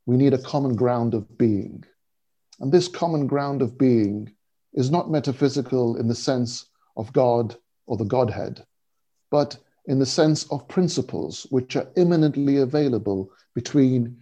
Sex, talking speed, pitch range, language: male, 150 wpm, 125-150 Hz, English